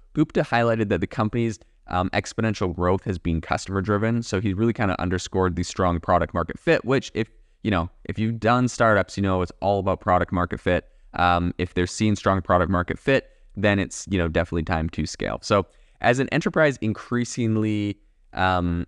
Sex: male